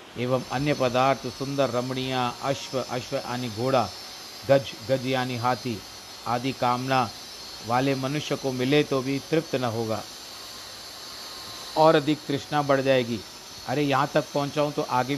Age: 50-69